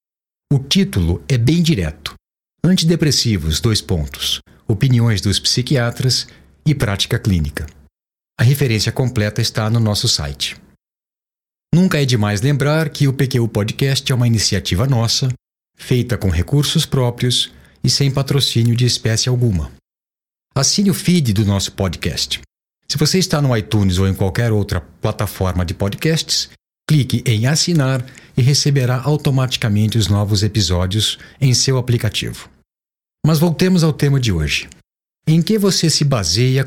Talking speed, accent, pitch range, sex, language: 135 wpm, Brazilian, 100-135 Hz, male, Portuguese